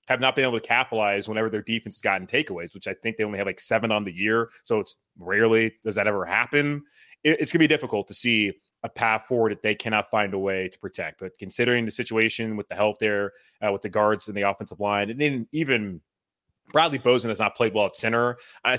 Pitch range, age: 105-120 Hz, 20-39